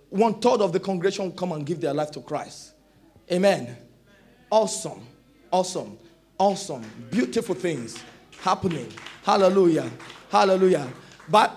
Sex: male